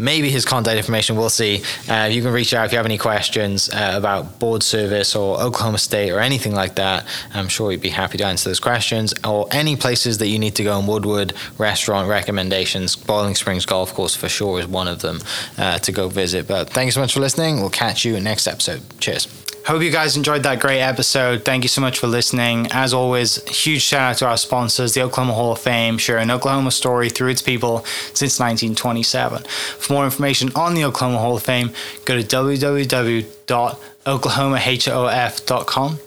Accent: British